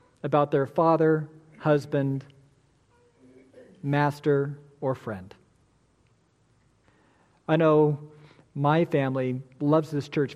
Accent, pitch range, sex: American, 135-180 Hz, male